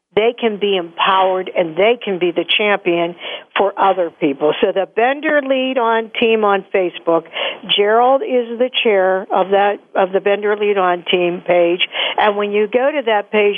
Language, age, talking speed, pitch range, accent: English, 50-69, 180 wpm, 195-250 Hz, American